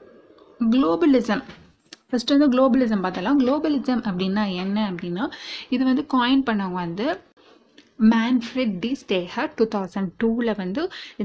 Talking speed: 105 wpm